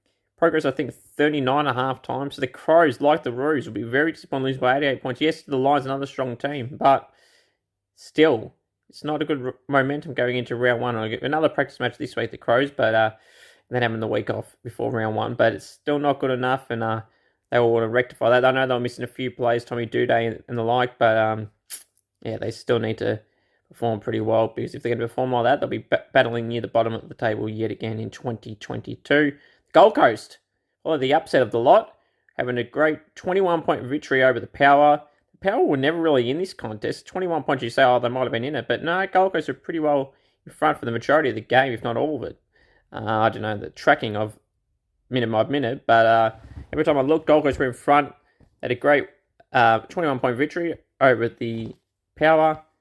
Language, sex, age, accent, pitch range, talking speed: English, male, 20-39, Australian, 115-145 Hz, 230 wpm